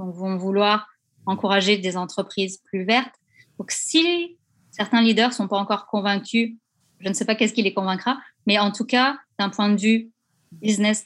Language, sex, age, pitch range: French, female, 20-39, 185-225 Hz